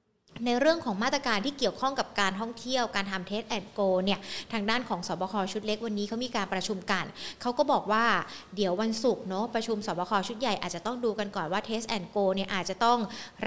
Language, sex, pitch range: Thai, female, 195-235 Hz